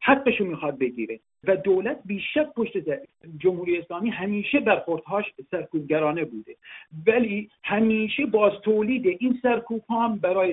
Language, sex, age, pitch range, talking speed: Persian, male, 50-69, 160-205 Hz, 115 wpm